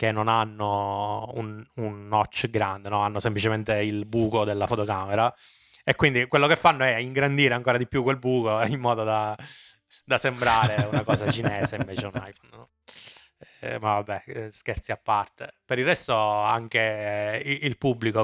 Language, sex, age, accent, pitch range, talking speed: Italian, male, 20-39, native, 100-115 Hz, 165 wpm